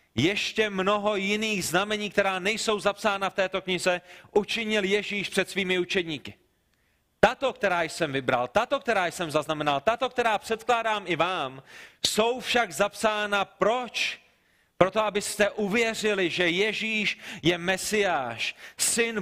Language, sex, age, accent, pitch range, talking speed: Czech, male, 30-49, native, 175-210 Hz, 125 wpm